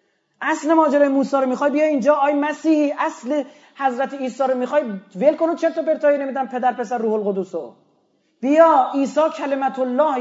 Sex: male